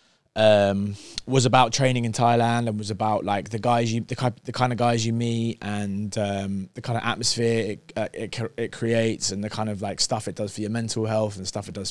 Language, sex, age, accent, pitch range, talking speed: English, male, 20-39, British, 105-125 Hz, 235 wpm